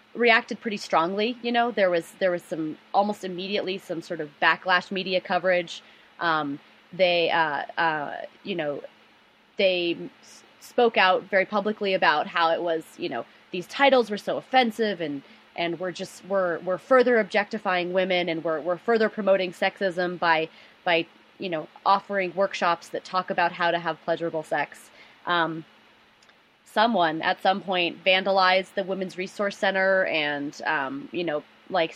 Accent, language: American, English